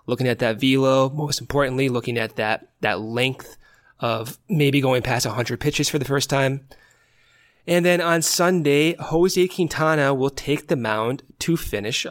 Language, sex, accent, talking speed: English, male, American, 165 wpm